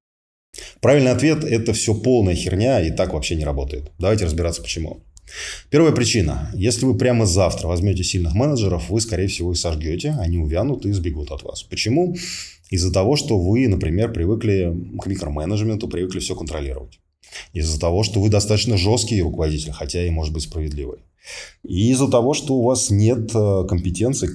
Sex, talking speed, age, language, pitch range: male, 165 wpm, 20-39, Russian, 80-105 Hz